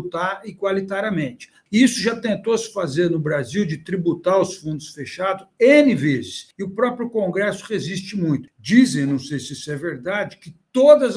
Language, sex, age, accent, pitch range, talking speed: Portuguese, male, 60-79, Brazilian, 160-205 Hz, 165 wpm